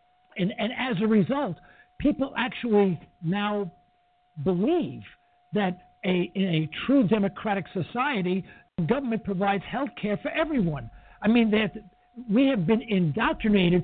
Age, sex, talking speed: 60-79, male, 130 wpm